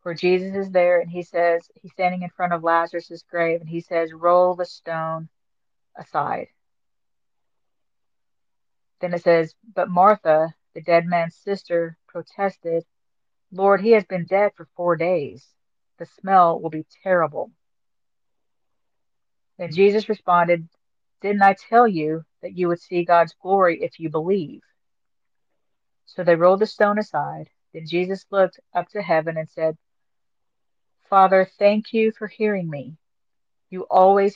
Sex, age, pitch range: female, 40-59, 165-190 Hz